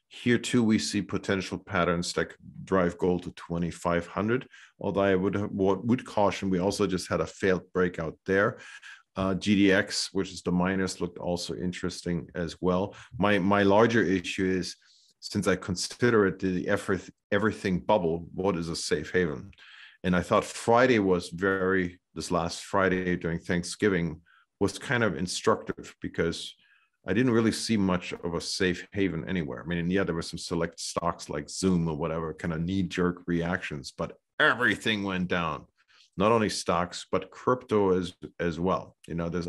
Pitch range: 85-100 Hz